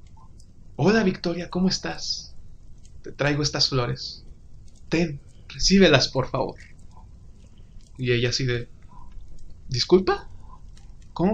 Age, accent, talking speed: 30-49, Mexican, 95 wpm